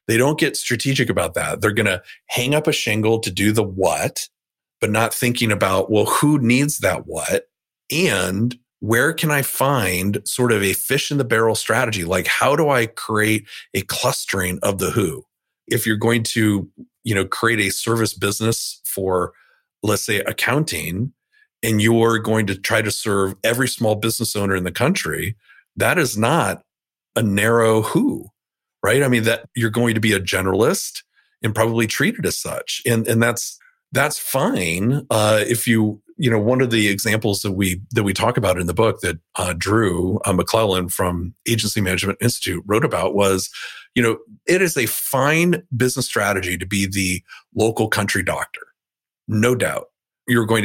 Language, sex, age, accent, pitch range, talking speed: English, male, 40-59, American, 100-125 Hz, 180 wpm